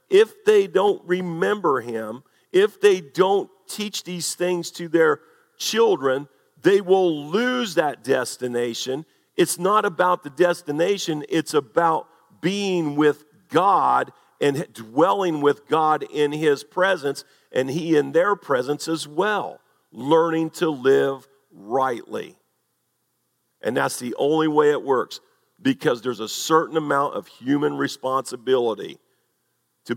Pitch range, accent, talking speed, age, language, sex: 135-180 Hz, American, 125 wpm, 50-69, English, male